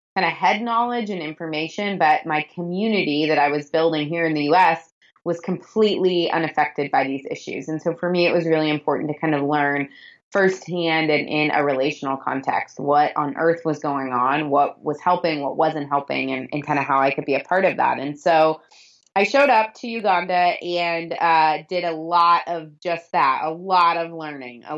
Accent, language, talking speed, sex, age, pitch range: American, English, 205 wpm, female, 20-39, 150-180 Hz